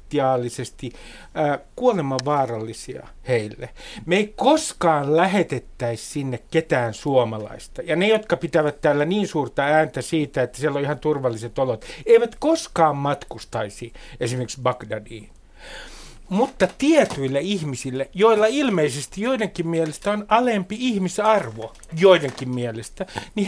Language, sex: Finnish, male